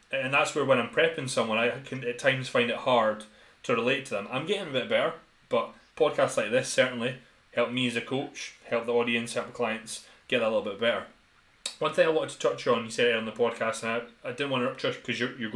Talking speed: 260 wpm